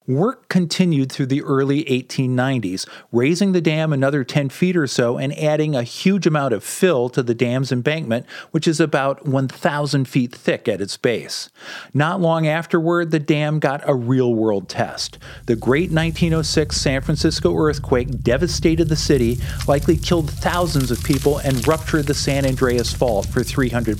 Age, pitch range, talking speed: 40-59, 125-165 Hz, 165 wpm